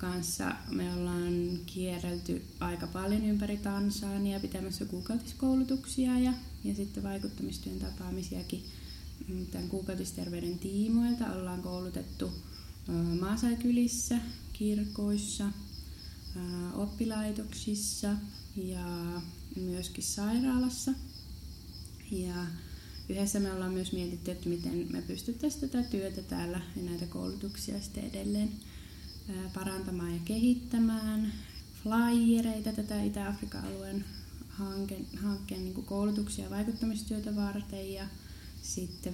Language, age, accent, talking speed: Finnish, 20-39, native, 90 wpm